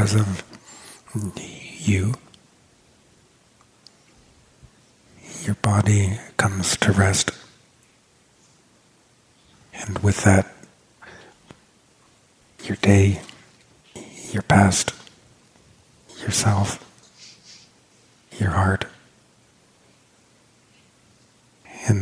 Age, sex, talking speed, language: 50-69, male, 50 wpm, English